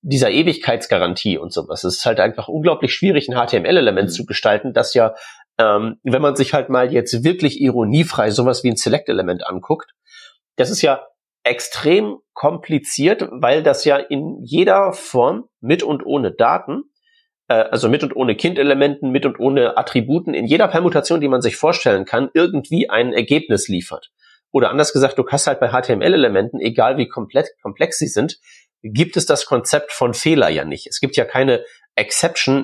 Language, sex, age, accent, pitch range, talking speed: German, male, 40-59, German, 130-180 Hz, 175 wpm